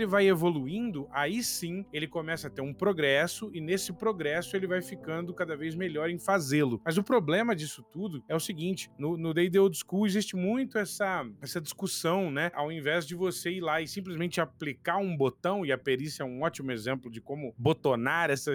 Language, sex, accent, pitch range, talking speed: Portuguese, male, Brazilian, 145-195 Hz, 205 wpm